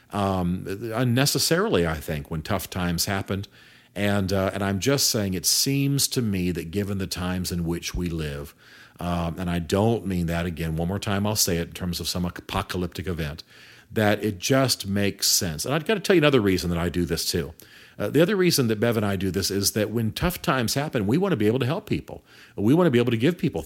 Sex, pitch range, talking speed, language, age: male, 90-120 Hz, 240 wpm, English, 50-69